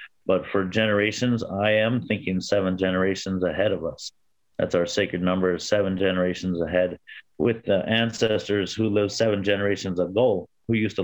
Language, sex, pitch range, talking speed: English, male, 95-115 Hz, 160 wpm